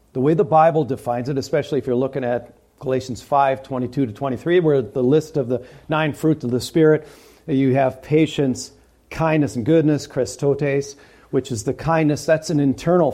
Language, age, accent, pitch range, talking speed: English, 50-69, American, 120-155 Hz, 170 wpm